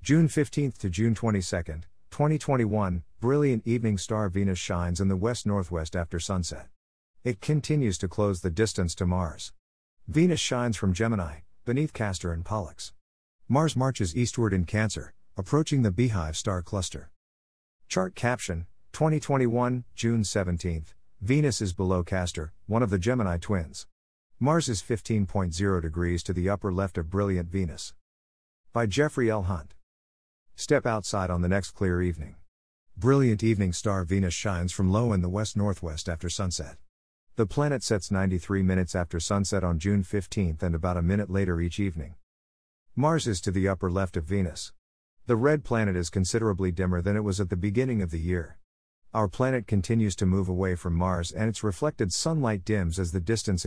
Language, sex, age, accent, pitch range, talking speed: English, male, 50-69, American, 85-110 Hz, 160 wpm